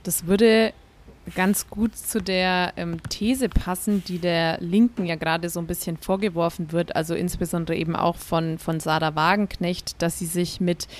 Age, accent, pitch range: 20-39, German, 175-205 Hz